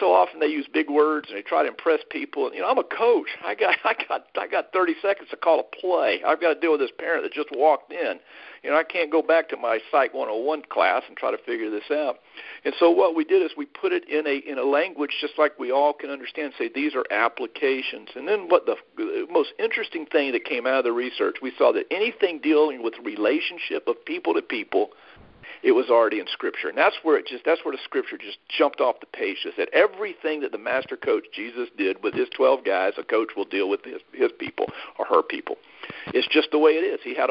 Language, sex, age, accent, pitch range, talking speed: English, male, 50-69, American, 305-440 Hz, 250 wpm